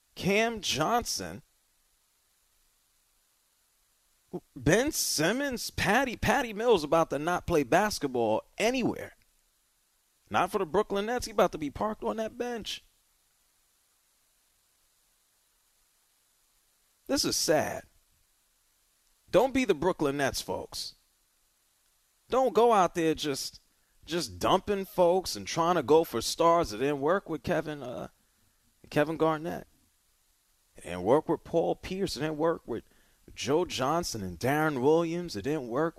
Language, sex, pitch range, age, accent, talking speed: English, male, 110-170 Hz, 30-49, American, 125 wpm